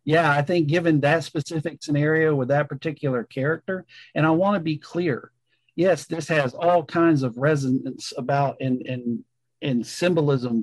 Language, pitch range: English, 130-175 Hz